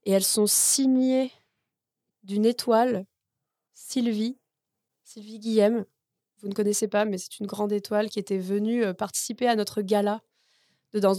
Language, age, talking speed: French, 20-39, 145 wpm